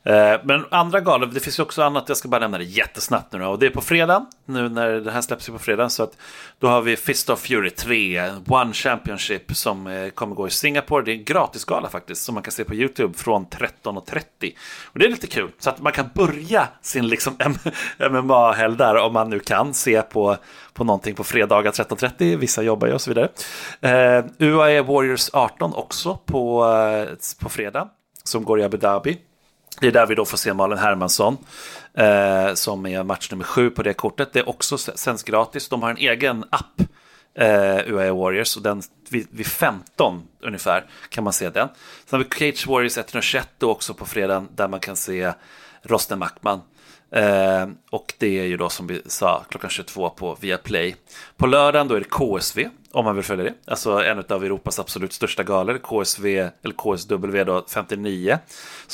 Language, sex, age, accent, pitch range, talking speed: Swedish, male, 30-49, native, 100-135 Hz, 200 wpm